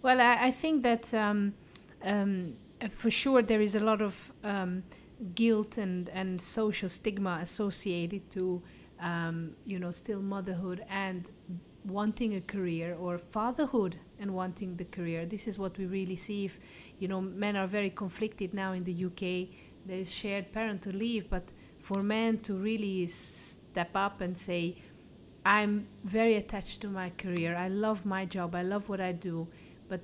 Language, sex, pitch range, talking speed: English, female, 180-210 Hz, 170 wpm